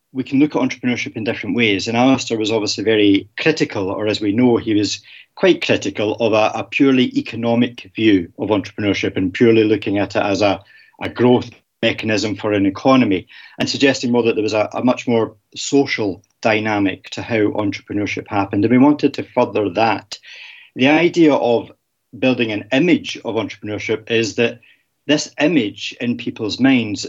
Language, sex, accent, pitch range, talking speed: English, male, British, 105-140 Hz, 175 wpm